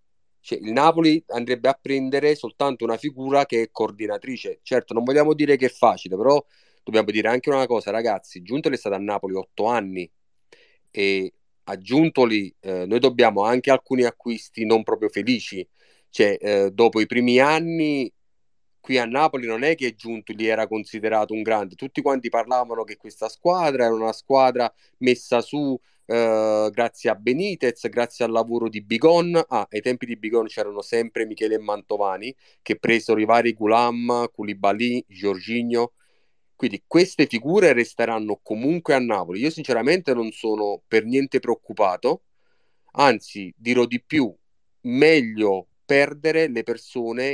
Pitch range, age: 110-135 Hz, 30-49